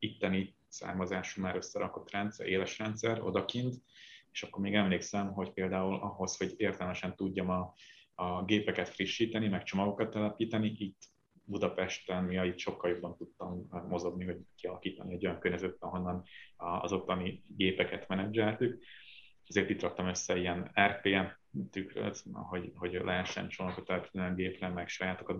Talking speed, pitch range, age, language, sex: 130 wpm, 90-105 Hz, 30-49, Hungarian, male